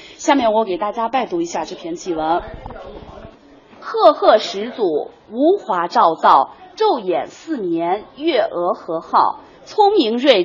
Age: 30-49